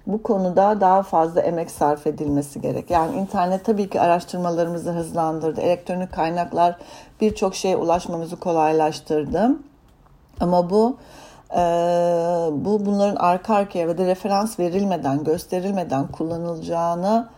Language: English